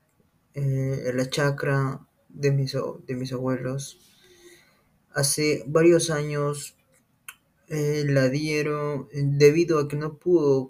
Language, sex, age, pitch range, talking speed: English, male, 20-39, 130-145 Hz, 105 wpm